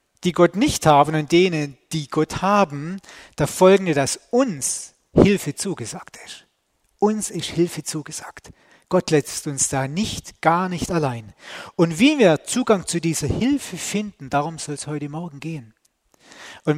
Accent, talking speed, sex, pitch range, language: German, 155 wpm, male, 135-180 Hz, German